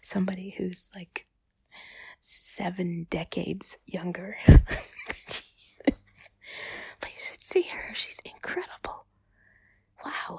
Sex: female